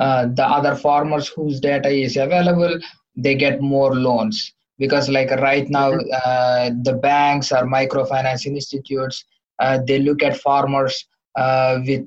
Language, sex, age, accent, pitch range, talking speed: English, male, 20-39, Indian, 130-145 Hz, 145 wpm